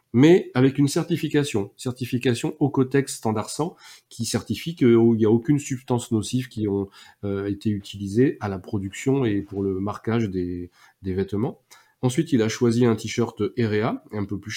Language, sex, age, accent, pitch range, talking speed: French, male, 30-49, French, 105-130 Hz, 165 wpm